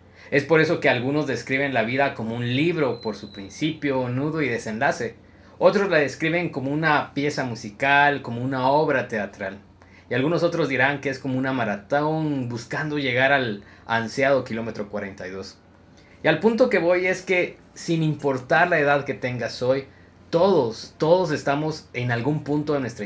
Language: Spanish